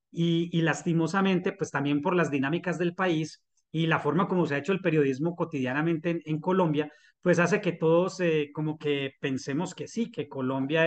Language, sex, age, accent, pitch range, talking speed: Spanish, male, 30-49, Colombian, 145-175 Hz, 195 wpm